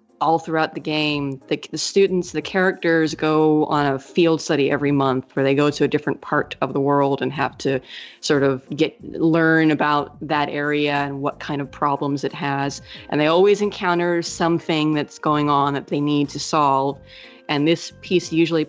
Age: 30-49